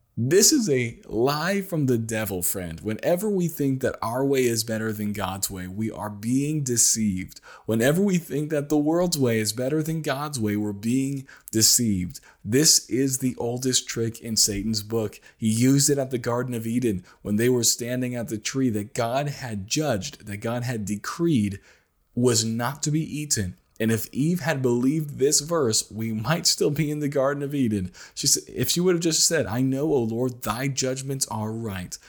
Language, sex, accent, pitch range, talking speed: English, male, American, 105-140 Hz, 200 wpm